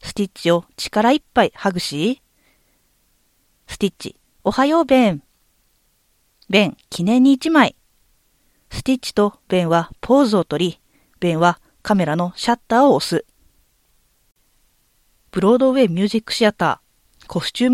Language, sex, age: Japanese, female, 40-59